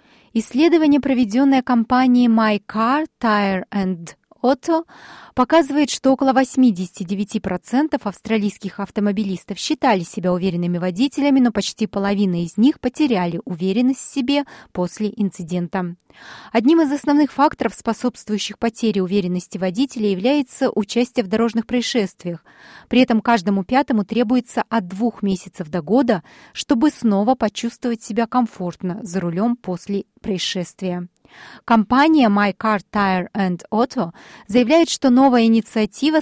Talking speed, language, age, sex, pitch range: 115 wpm, Russian, 20-39, female, 195-260 Hz